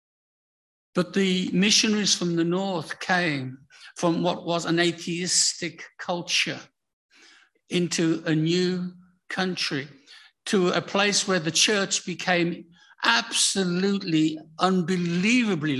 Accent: British